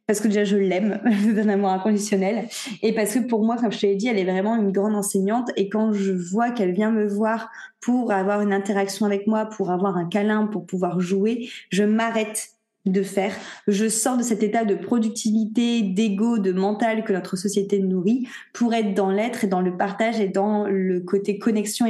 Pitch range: 195-230 Hz